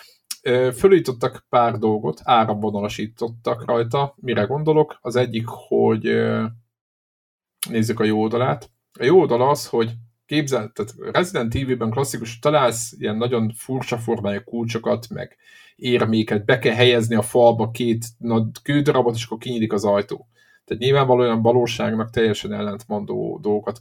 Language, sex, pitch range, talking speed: Hungarian, male, 110-125 Hz, 135 wpm